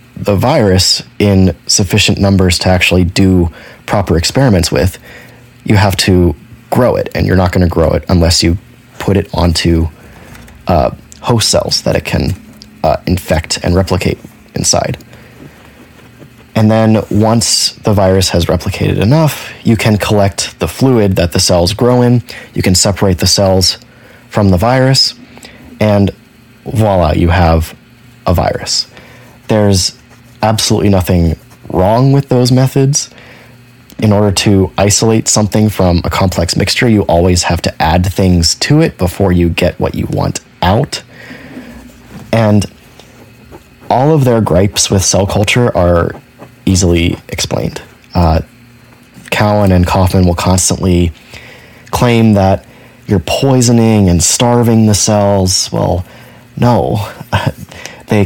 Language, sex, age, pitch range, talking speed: English, male, 30-49, 90-115 Hz, 135 wpm